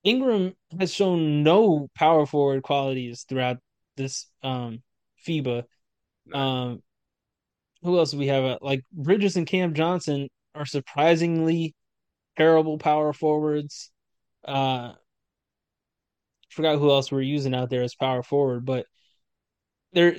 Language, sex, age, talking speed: English, male, 20-39, 120 wpm